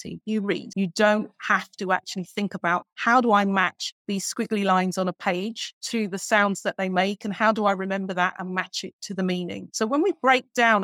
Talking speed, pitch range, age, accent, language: 235 wpm, 190-230 Hz, 30-49, British, English